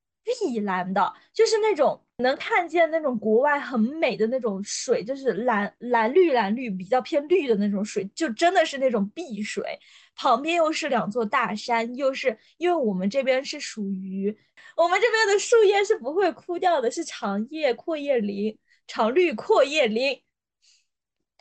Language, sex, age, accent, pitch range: Chinese, female, 20-39, native, 215-310 Hz